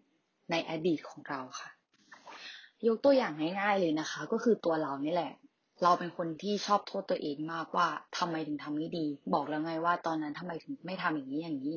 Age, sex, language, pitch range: 20-39, female, Thai, 155-210 Hz